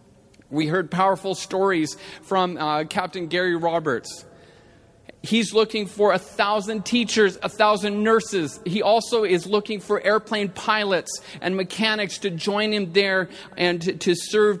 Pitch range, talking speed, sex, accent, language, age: 185-220 Hz, 145 wpm, male, American, English, 40-59